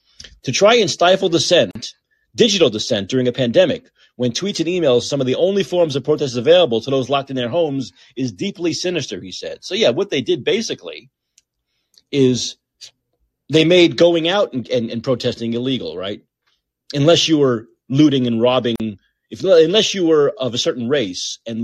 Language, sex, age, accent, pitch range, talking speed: English, male, 30-49, American, 125-170 Hz, 180 wpm